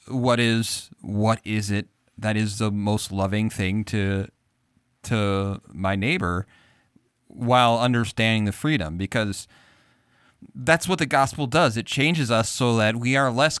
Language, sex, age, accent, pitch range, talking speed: English, male, 30-49, American, 105-130 Hz, 145 wpm